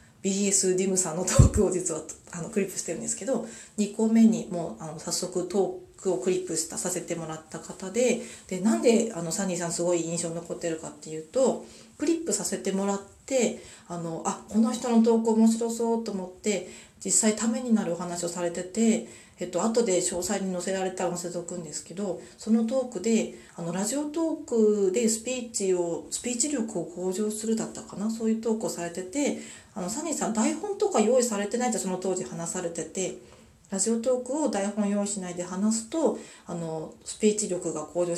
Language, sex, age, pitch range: Japanese, female, 40-59, 175-225 Hz